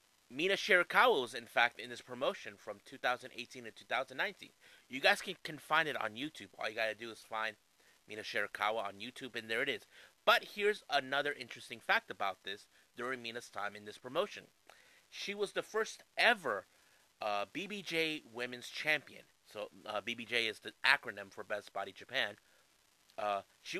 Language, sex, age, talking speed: English, male, 30-49, 170 wpm